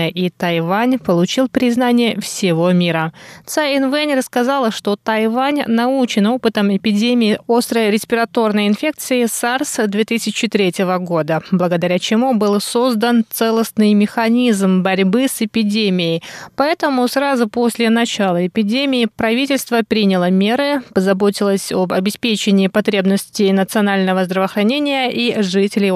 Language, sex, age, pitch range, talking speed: Russian, female, 20-39, 195-245 Hz, 105 wpm